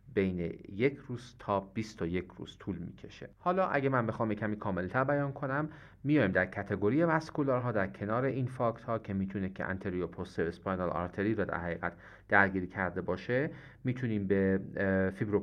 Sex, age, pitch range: male, 40-59, 90-115 Hz